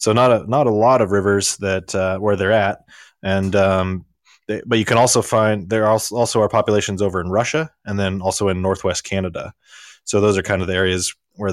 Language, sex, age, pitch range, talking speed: English, male, 20-39, 95-105 Hz, 225 wpm